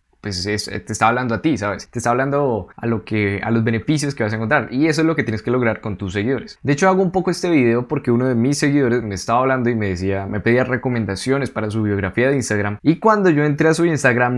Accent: Colombian